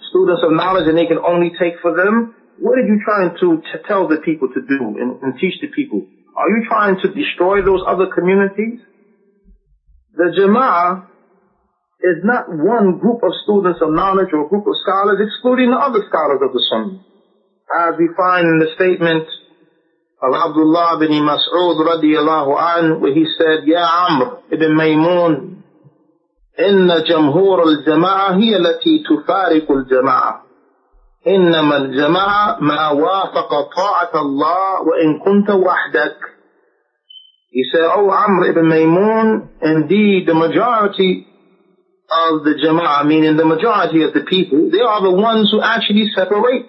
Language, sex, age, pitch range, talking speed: English, male, 40-59, 160-205 Hz, 145 wpm